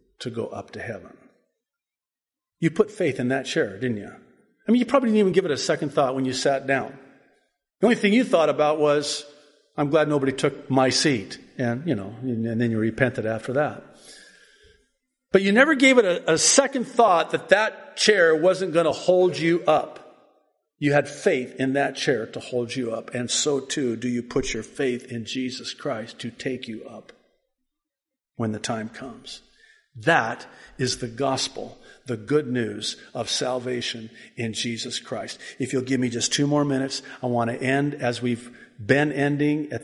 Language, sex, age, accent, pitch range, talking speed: English, male, 50-69, American, 120-155 Hz, 190 wpm